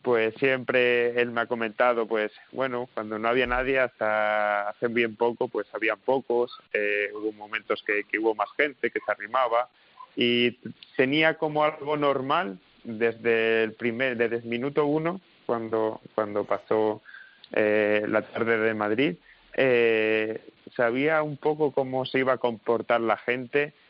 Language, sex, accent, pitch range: Spanish, male, Spanish, 110-125 Hz